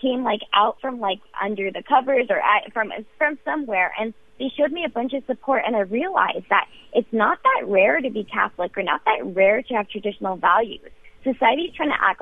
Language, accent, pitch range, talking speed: English, American, 200-250 Hz, 215 wpm